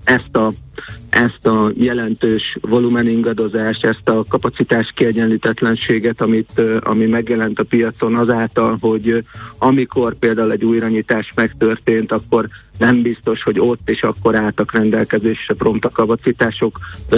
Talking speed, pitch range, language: 120 wpm, 110-120 Hz, Hungarian